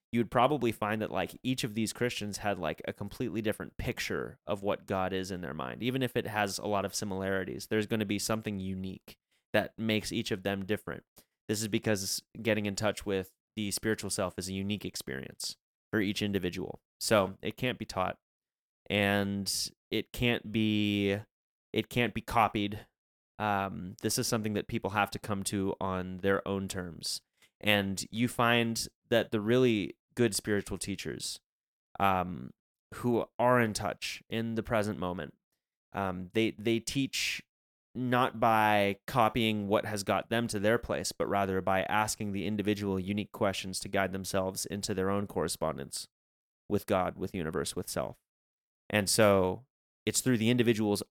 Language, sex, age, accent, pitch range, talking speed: English, male, 20-39, American, 95-110 Hz, 170 wpm